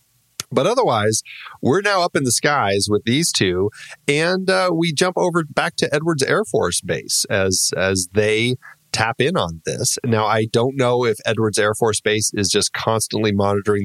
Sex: male